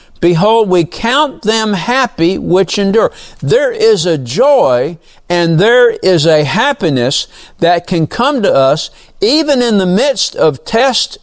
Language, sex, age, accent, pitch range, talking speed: English, male, 60-79, American, 150-210 Hz, 145 wpm